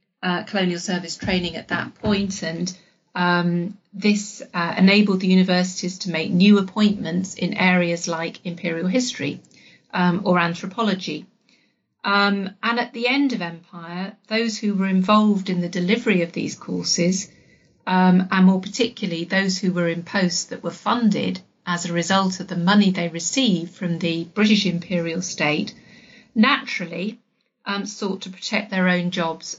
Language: English